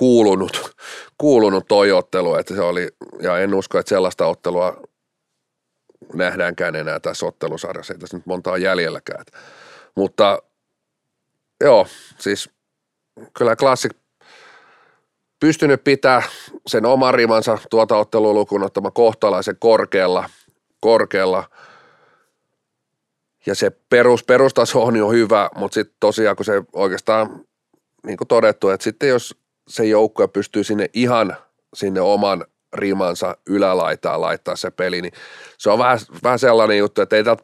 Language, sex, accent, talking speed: Finnish, male, native, 125 wpm